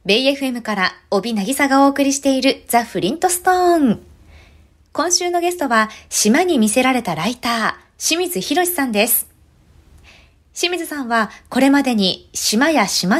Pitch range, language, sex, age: 205-315 Hz, Japanese, female, 20-39